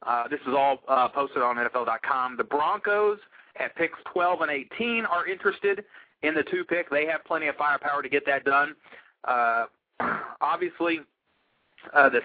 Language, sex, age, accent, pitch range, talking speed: English, male, 30-49, American, 140-185 Hz, 160 wpm